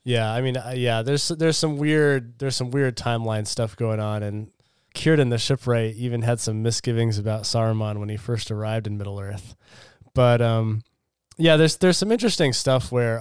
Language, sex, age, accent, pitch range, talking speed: English, male, 20-39, American, 110-130 Hz, 185 wpm